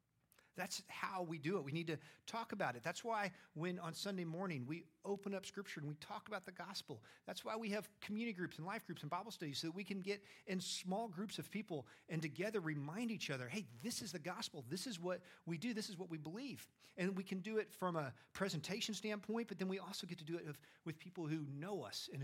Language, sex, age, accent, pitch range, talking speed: English, male, 50-69, American, 140-190 Hz, 250 wpm